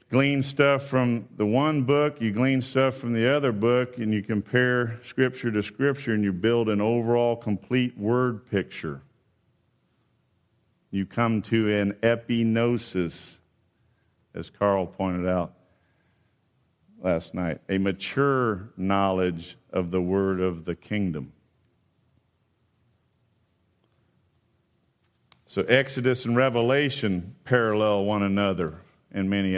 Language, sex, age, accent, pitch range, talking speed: English, male, 50-69, American, 100-125 Hz, 115 wpm